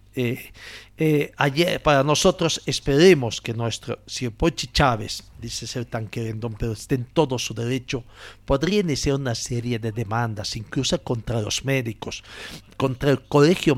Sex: male